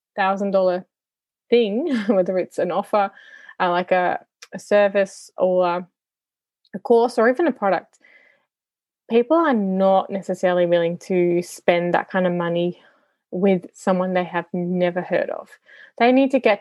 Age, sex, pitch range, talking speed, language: 20-39, female, 190-250 Hz, 150 wpm, English